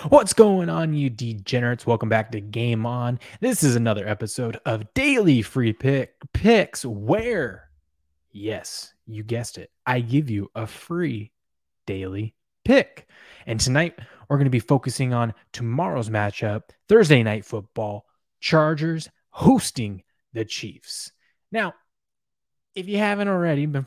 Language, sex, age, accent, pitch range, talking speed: English, male, 20-39, American, 110-145 Hz, 135 wpm